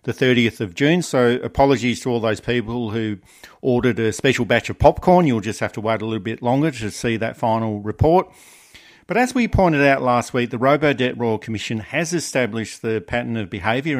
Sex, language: male, English